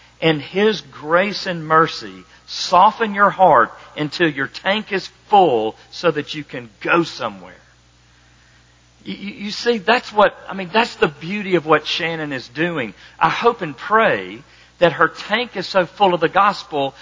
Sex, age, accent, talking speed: male, 50-69, American, 160 wpm